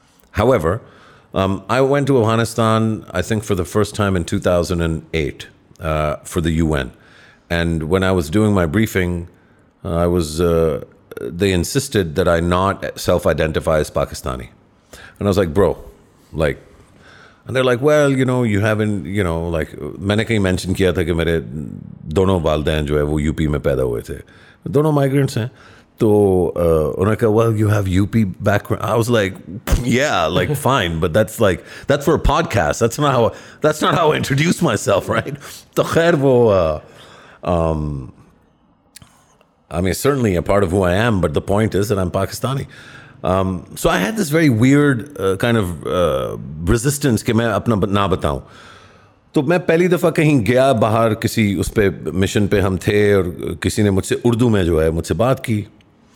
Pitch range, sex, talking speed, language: 90-120 Hz, male, 170 wpm, Urdu